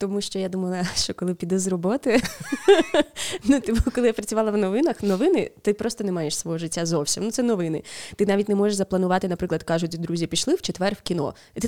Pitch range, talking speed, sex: 170-200 Hz, 215 wpm, female